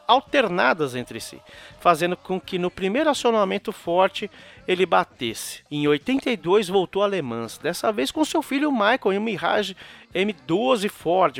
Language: Portuguese